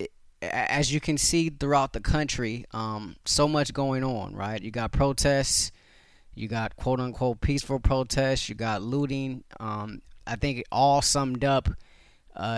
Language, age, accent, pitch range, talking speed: English, 30-49, American, 110-130 Hz, 155 wpm